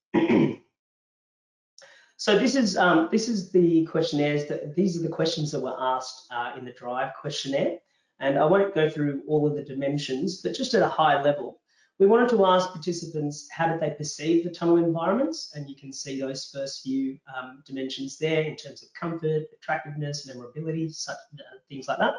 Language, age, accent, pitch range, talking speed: English, 30-49, Australian, 135-175 Hz, 185 wpm